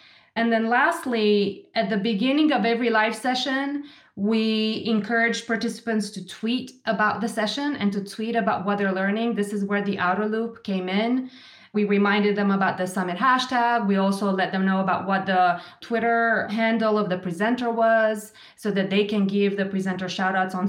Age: 20-39